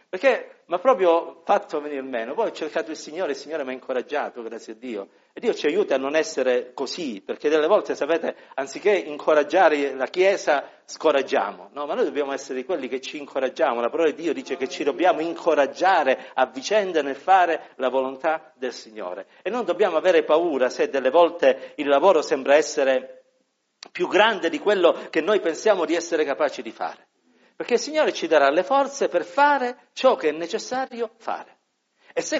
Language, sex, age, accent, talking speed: Italian, male, 50-69, native, 195 wpm